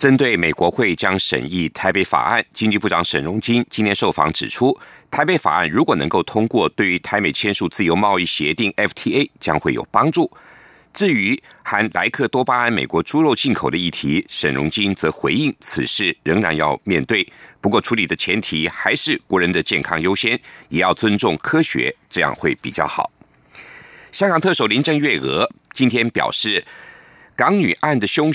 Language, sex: Chinese, male